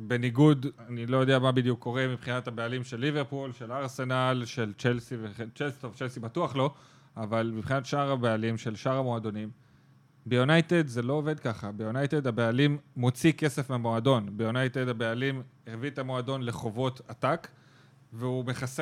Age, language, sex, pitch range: 30-49, Hebrew, male, 125-145 Hz